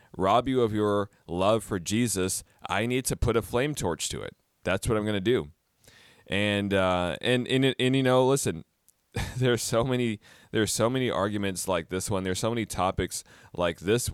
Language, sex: English, male